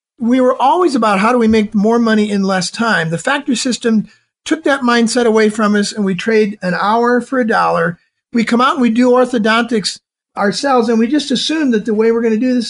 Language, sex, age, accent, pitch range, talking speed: English, male, 50-69, American, 195-235 Hz, 235 wpm